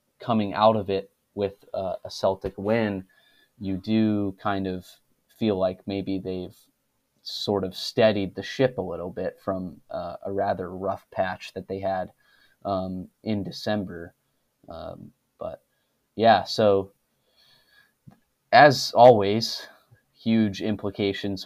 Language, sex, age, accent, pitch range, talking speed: English, male, 20-39, American, 95-110 Hz, 125 wpm